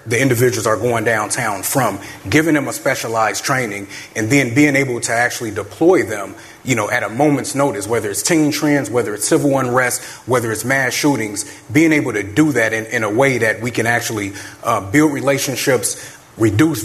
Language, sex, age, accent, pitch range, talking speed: English, male, 30-49, American, 110-140 Hz, 190 wpm